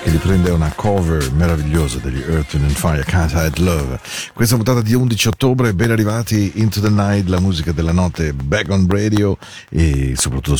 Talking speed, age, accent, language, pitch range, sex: 175 wpm, 40-59, Italian, Spanish, 70-90 Hz, male